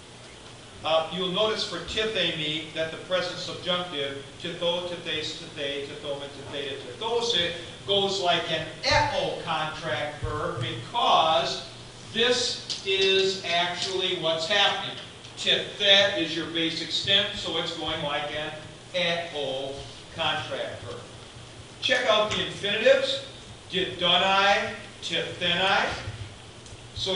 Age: 50-69